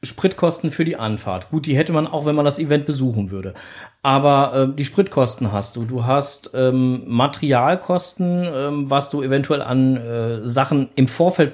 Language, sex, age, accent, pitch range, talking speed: German, male, 40-59, German, 130-155 Hz, 175 wpm